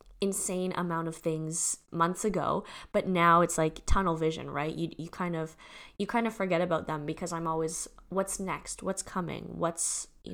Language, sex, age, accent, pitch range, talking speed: English, female, 20-39, American, 165-200 Hz, 185 wpm